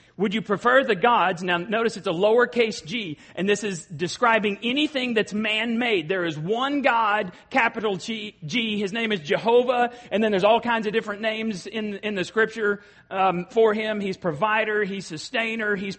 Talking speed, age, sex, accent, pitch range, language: 185 wpm, 40-59, male, American, 195-235 Hz, English